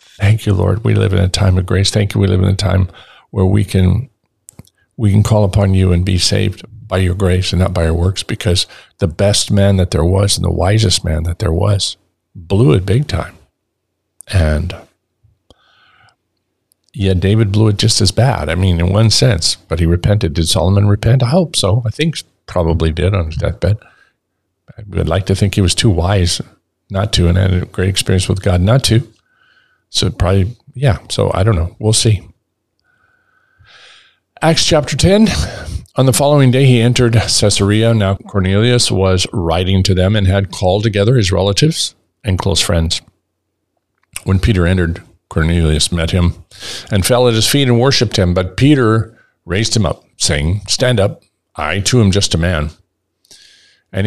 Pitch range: 90-110 Hz